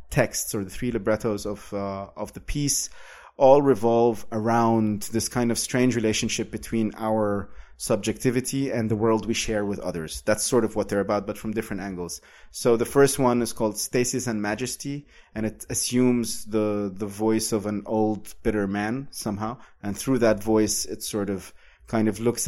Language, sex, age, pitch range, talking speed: English, male, 30-49, 100-120 Hz, 185 wpm